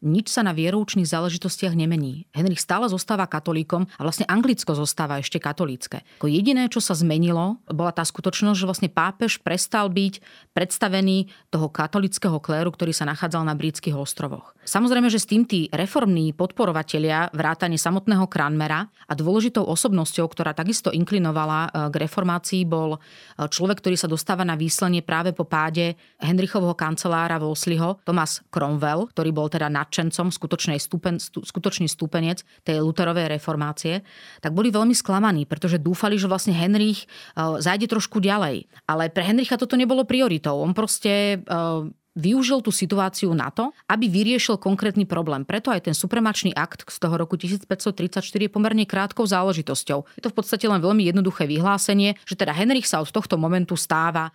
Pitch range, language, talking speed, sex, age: 160-205 Hz, Slovak, 160 wpm, female, 30-49